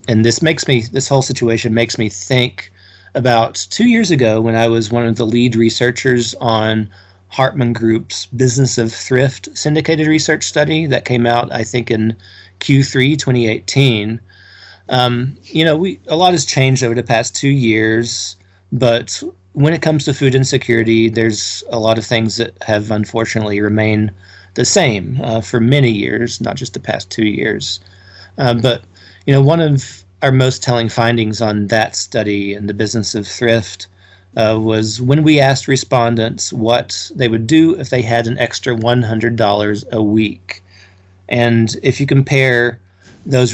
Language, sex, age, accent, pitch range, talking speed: English, male, 40-59, American, 105-130 Hz, 165 wpm